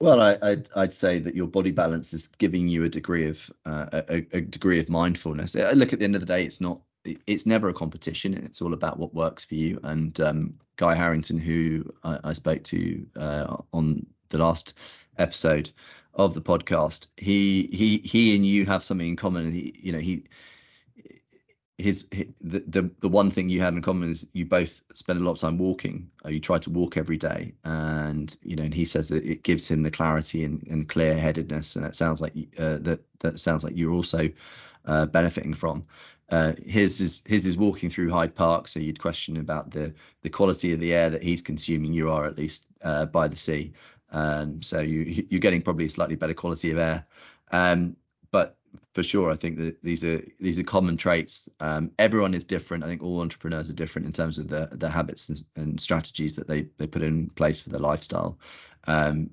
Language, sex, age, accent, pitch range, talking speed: English, male, 30-49, British, 80-90 Hz, 215 wpm